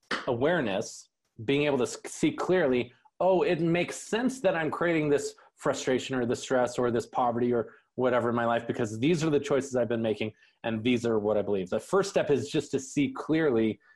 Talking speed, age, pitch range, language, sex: 205 wpm, 30-49, 115-145 Hz, English, male